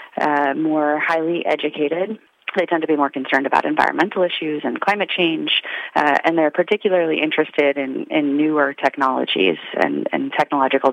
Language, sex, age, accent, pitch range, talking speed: English, female, 30-49, American, 145-180 Hz, 155 wpm